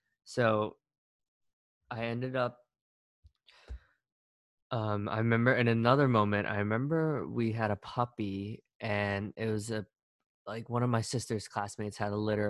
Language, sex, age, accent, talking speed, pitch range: English, male, 20-39, American, 140 wpm, 100-115 Hz